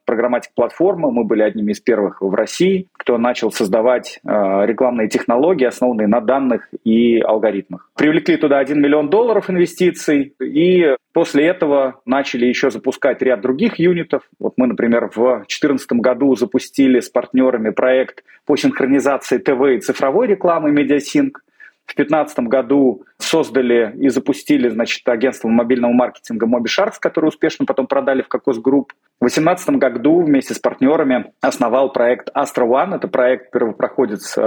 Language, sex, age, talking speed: Russian, male, 30-49, 145 wpm